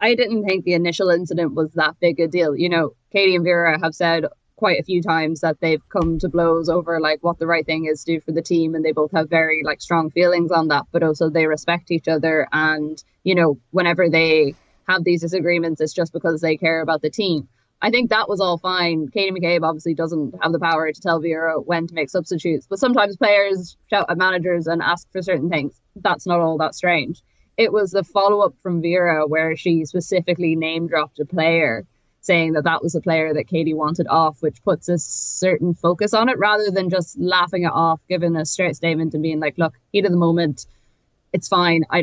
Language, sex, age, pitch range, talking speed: English, female, 20-39, 160-180 Hz, 225 wpm